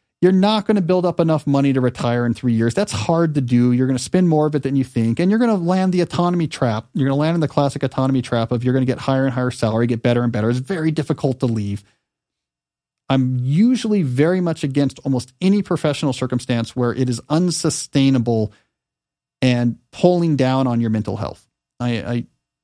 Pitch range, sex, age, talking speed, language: 125-170 Hz, male, 40-59, 225 wpm, English